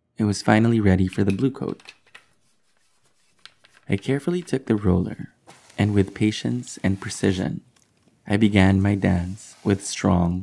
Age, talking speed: 20-39, 140 wpm